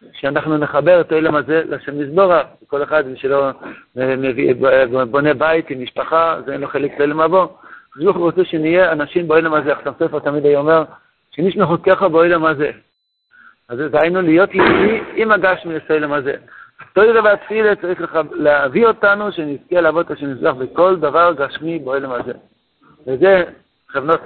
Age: 60-79